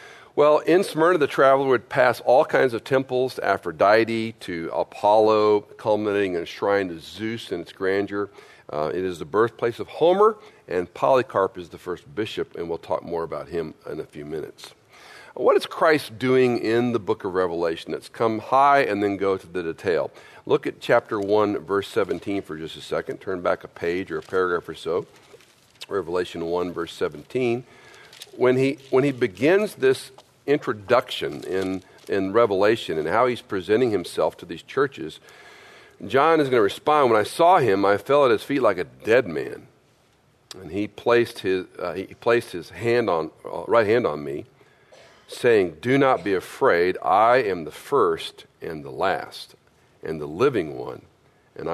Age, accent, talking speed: 50-69, American, 180 wpm